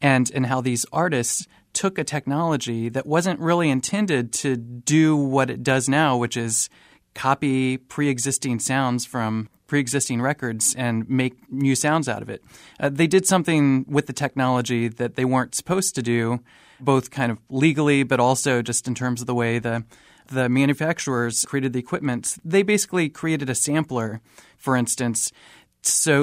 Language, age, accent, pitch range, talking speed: English, 30-49, American, 125-150 Hz, 165 wpm